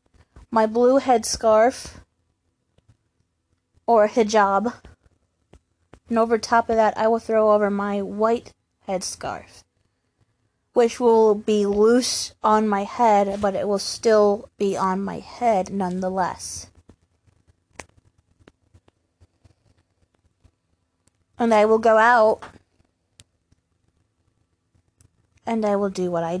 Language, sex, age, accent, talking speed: English, female, 20-39, American, 100 wpm